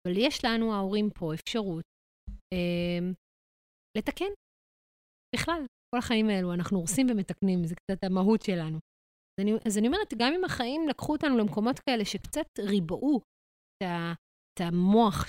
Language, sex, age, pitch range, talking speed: Hebrew, female, 30-49, 185-250 Hz, 135 wpm